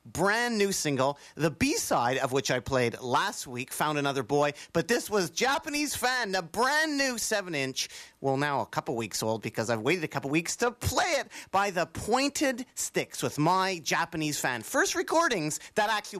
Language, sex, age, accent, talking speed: English, male, 40-59, American, 185 wpm